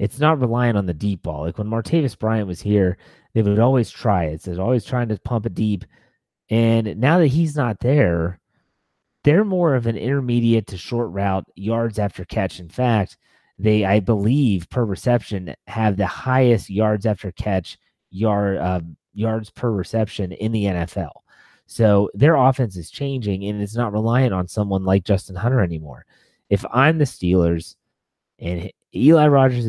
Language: English